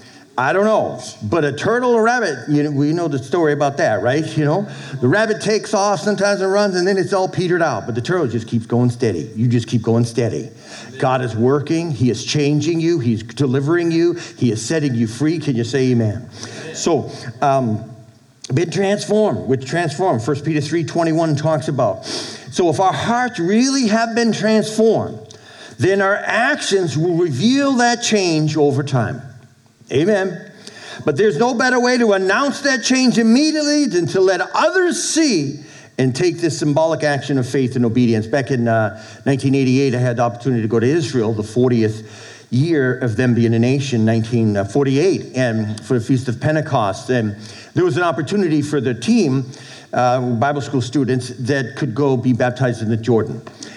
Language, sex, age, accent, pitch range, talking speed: English, male, 50-69, American, 120-185 Hz, 180 wpm